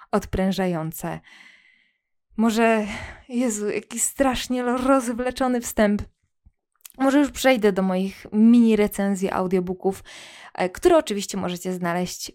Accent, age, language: native, 20-39, Polish